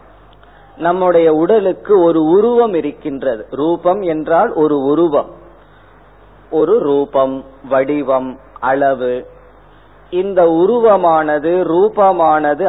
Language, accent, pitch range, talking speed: Tamil, native, 140-175 Hz, 75 wpm